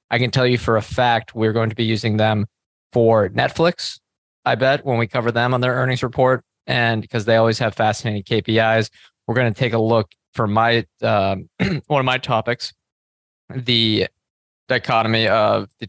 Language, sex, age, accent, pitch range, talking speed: English, male, 20-39, American, 110-125 Hz, 185 wpm